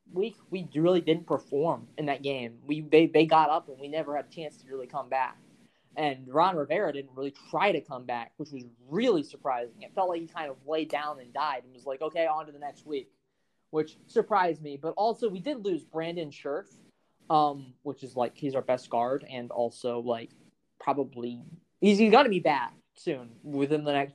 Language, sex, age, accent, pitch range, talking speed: English, male, 20-39, American, 135-185 Hz, 215 wpm